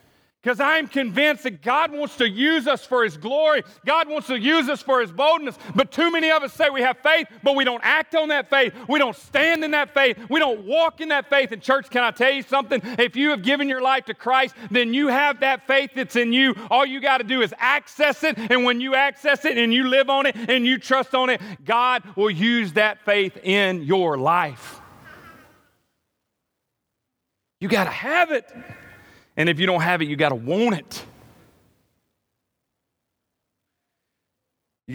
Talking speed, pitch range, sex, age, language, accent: 205 wpm, 190-270 Hz, male, 40-59, English, American